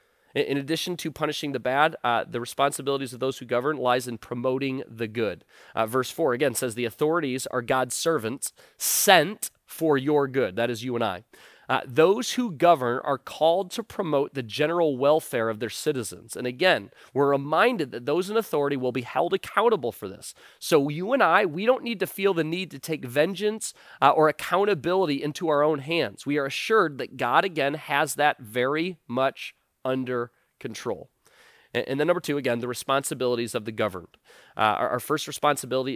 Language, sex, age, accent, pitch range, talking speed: English, male, 30-49, American, 130-165 Hz, 190 wpm